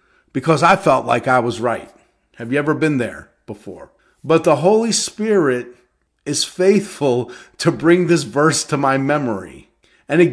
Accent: American